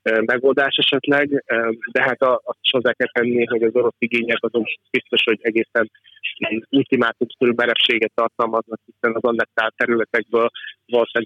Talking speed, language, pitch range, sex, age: 125 wpm, Hungarian, 115-135 Hz, male, 30-49